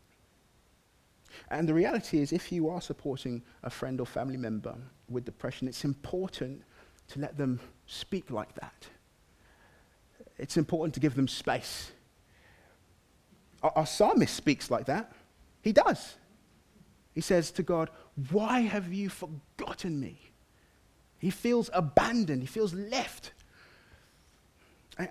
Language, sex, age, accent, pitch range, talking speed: English, male, 30-49, British, 125-175 Hz, 125 wpm